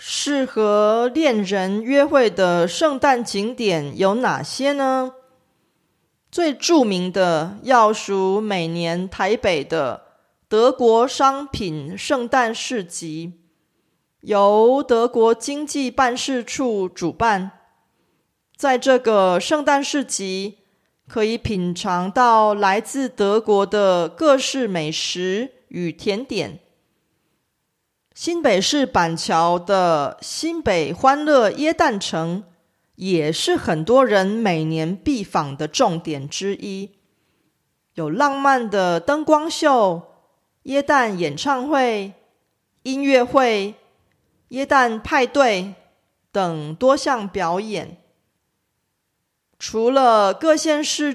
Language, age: Korean, 30-49